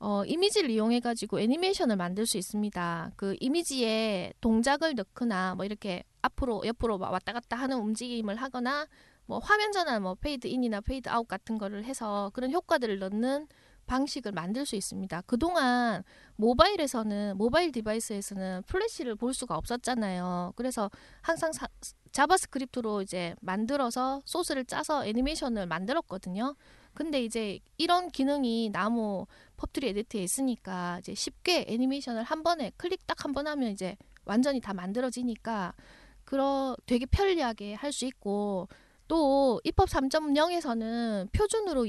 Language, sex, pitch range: Korean, female, 205-285 Hz